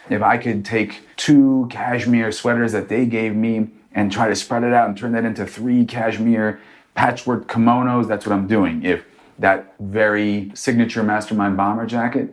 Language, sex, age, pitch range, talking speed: English, male, 30-49, 95-115 Hz, 175 wpm